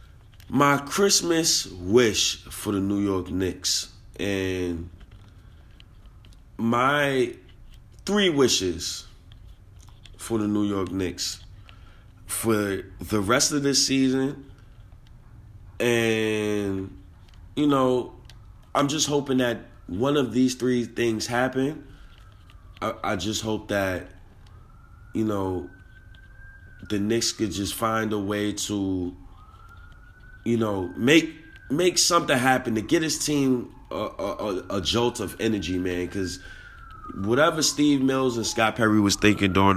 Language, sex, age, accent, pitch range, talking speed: English, male, 20-39, American, 95-140 Hz, 120 wpm